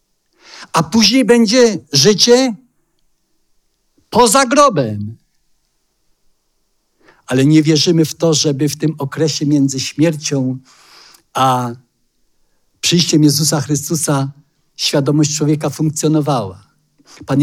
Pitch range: 130-185 Hz